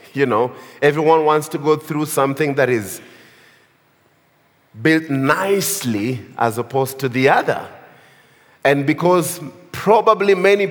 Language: English